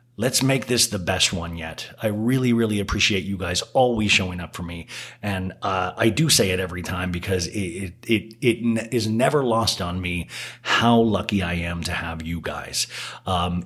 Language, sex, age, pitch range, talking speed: English, male, 30-49, 95-120 Hz, 200 wpm